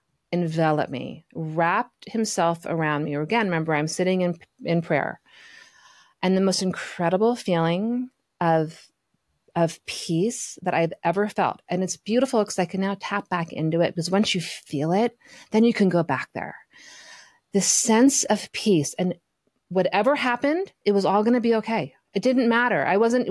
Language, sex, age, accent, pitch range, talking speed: English, female, 30-49, American, 160-205 Hz, 170 wpm